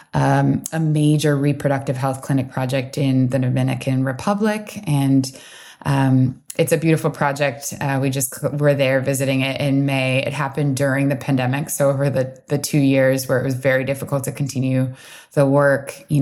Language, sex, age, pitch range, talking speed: English, female, 20-39, 130-145 Hz, 175 wpm